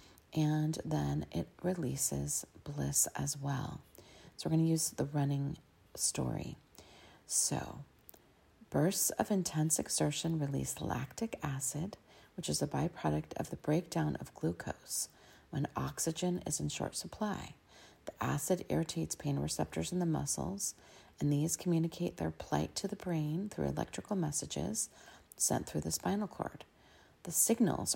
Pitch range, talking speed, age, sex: 140-180 Hz, 135 wpm, 40-59, female